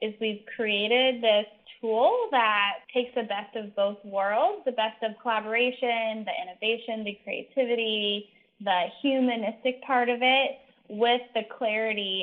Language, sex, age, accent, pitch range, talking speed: English, female, 10-29, American, 205-245 Hz, 135 wpm